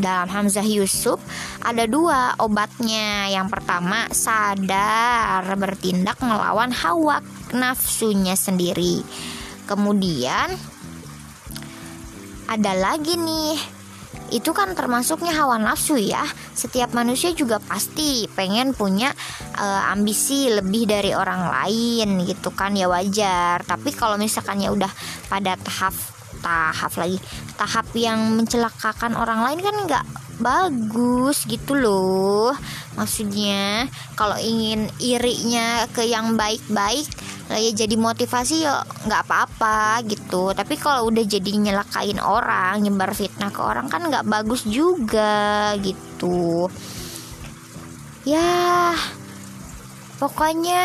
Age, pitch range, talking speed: 20-39, 195-250 Hz, 105 wpm